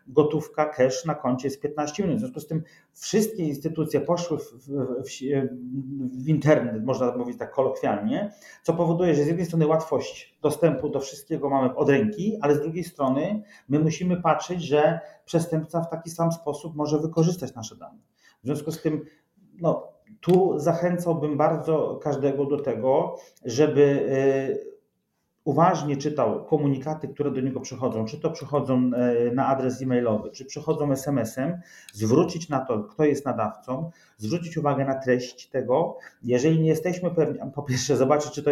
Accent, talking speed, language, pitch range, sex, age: native, 160 wpm, Polish, 135-165 Hz, male, 40-59